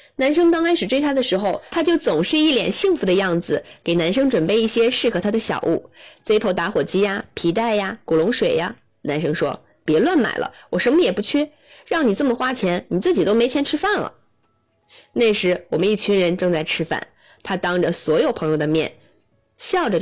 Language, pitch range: Chinese, 185-300 Hz